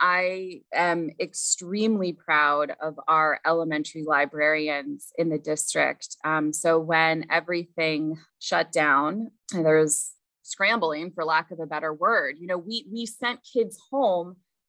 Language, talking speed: English, 140 wpm